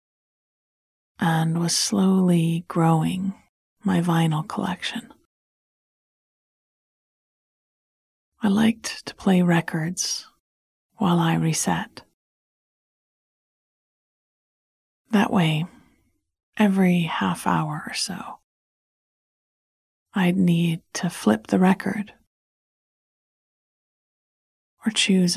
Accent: American